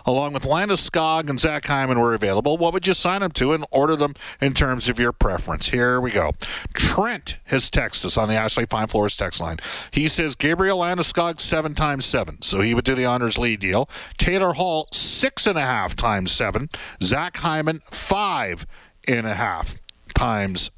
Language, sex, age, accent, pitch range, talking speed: English, male, 50-69, American, 120-165 Hz, 195 wpm